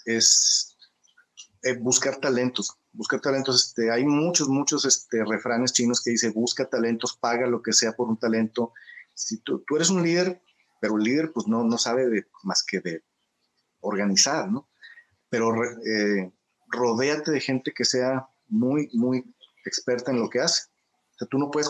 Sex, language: male, Spanish